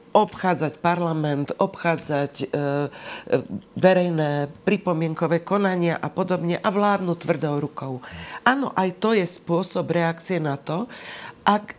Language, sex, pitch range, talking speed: Slovak, female, 155-195 Hz, 110 wpm